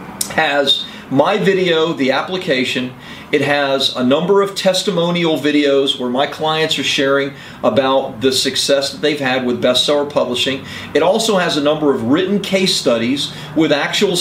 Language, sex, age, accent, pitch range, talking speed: English, male, 40-59, American, 135-190 Hz, 155 wpm